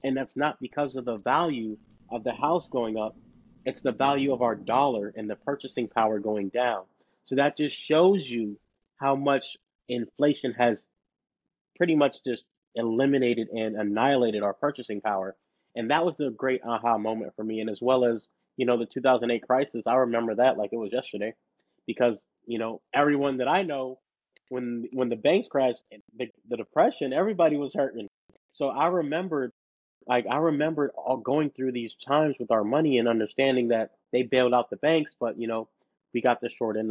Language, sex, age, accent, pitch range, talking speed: English, male, 30-49, American, 110-135 Hz, 185 wpm